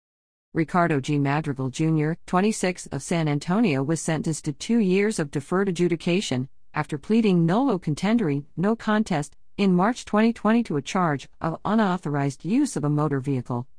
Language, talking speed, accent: English, 150 wpm, American